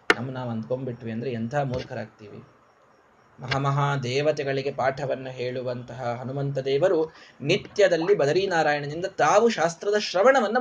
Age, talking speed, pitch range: 20-39, 100 wpm, 130-210 Hz